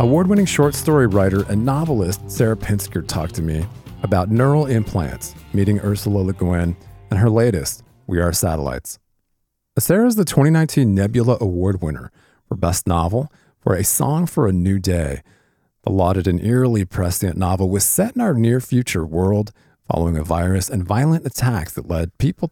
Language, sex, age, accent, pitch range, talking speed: English, male, 40-59, American, 90-125 Hz, 165 wpm